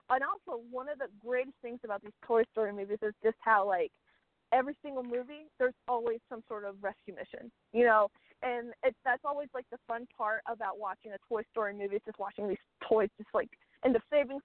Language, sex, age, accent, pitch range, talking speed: English, female, 20-39, American, 210-250 Hz, 215 wpm